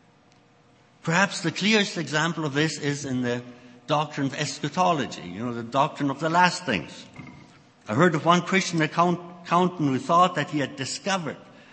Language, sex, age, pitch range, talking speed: English, male, 60-79, 145-195 Hz, 165 wpm